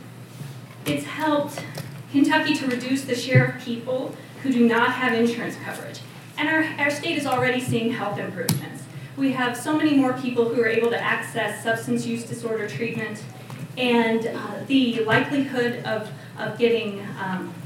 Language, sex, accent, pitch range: English, female, American, 210-260 Hz